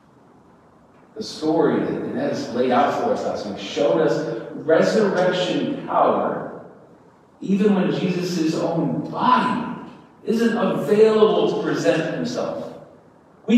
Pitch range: 165-220 Hz